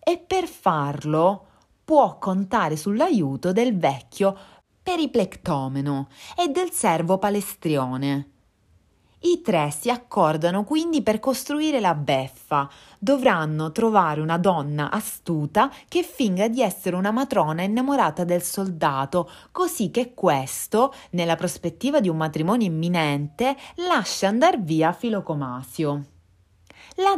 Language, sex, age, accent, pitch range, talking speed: Italian, female, 30-49, native, 155-245 Hz, 110 wpm